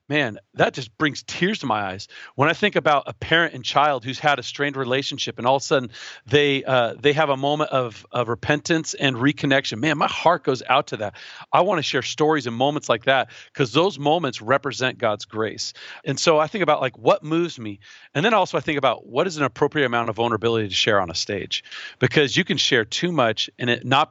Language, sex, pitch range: English, male, 120-155 Hz